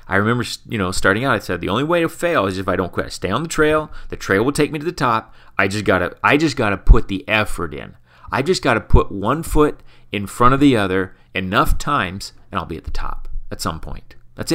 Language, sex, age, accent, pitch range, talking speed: English, male, 30-49, American, 85-125 Hz, 260 wpm